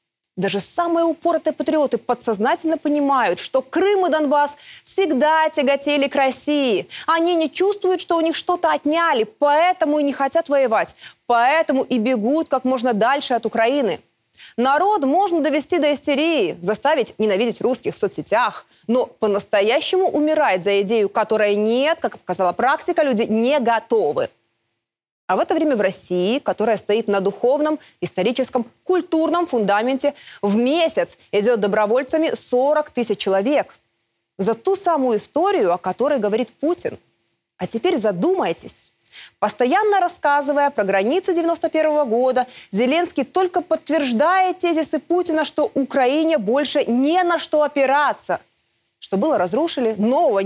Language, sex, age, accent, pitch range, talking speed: Russian, female, 20-39, native, 230-325 Hz, 130 wpm